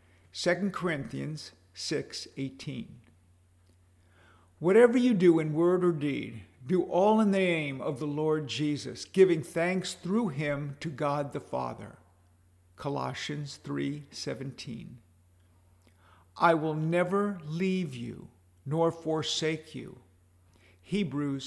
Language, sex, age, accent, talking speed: English, male, 50-69, American, 105 wpm